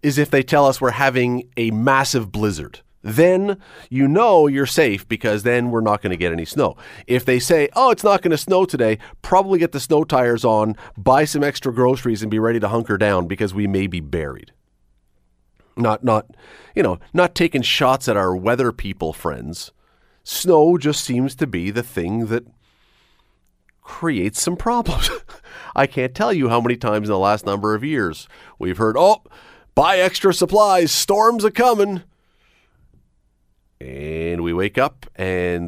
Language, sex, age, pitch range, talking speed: English, male, 40-59, 105-155 Hz, 175 wpm